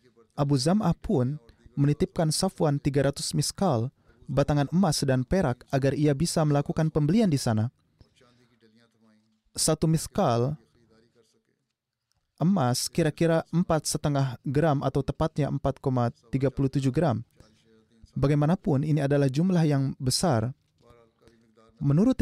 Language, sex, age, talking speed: Indonesian, male, 20-39, 95 wpm